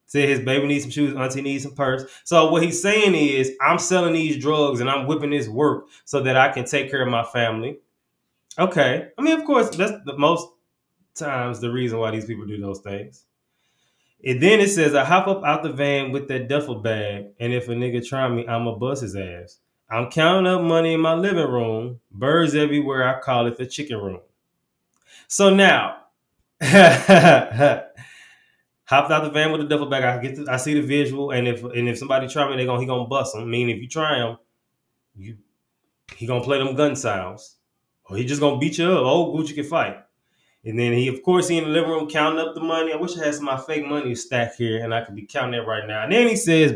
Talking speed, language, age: 230 wpm, English, 20-39